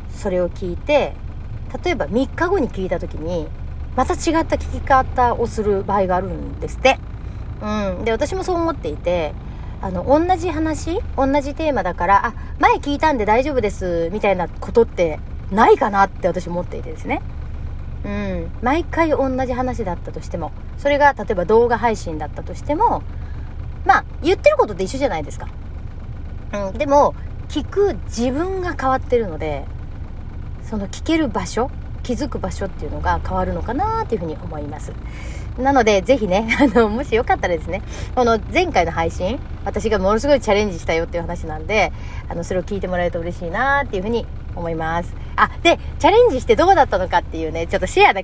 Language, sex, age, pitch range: Japanese, female, 40-59, 190-315 Hz